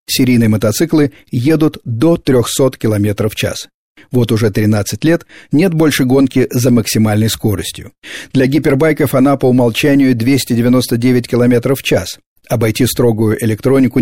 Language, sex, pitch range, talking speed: Russian, male, 110-140 Hz, 130 wpm